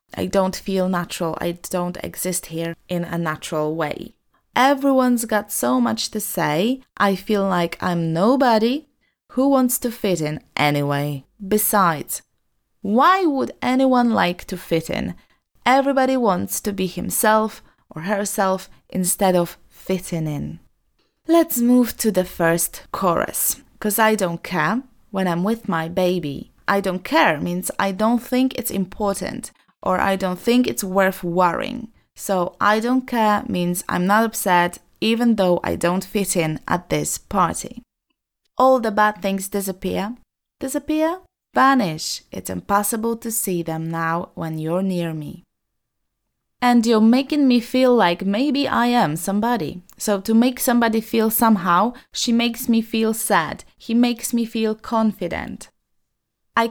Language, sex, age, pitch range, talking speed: Polish, female, 20-39, 180-235 Hz, 150 wpm